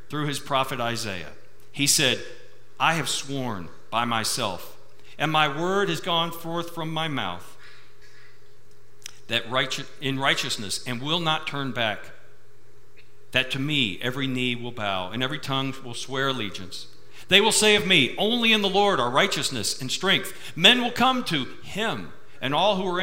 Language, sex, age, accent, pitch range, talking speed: English, male, 50-69, American, 110-160 Hz, 165 wpm